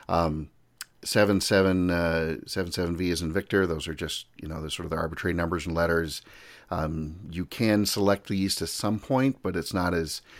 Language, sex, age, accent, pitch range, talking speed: English, male, 40-59, American, 85-95 Hz, 200 wpm